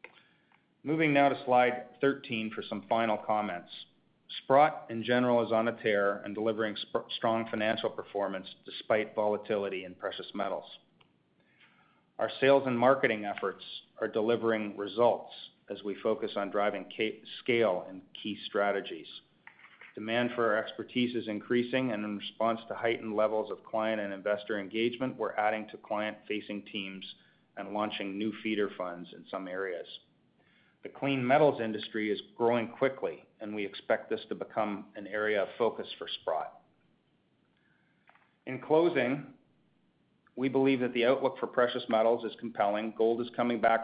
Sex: male